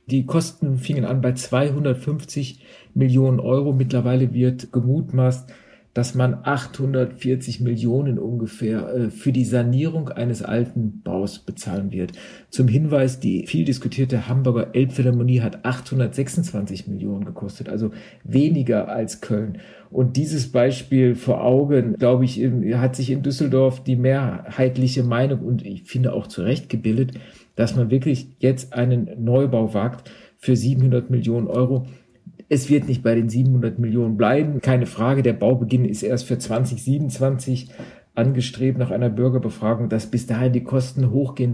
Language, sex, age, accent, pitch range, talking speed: German, male, 50-69, German, 120-135 Hz, 140 wpm